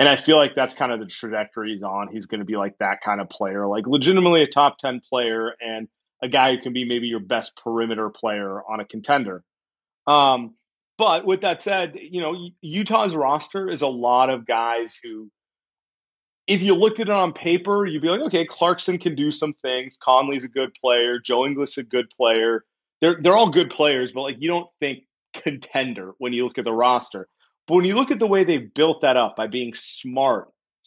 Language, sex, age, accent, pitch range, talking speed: English, male, 30-49, American, 120-165 Hz, 220 wpm